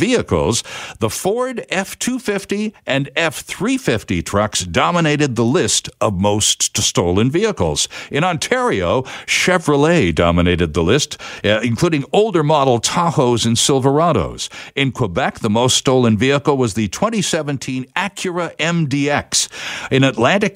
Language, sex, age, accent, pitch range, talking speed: English, male, 60-79, American, 115-170 Hz, 115 wpm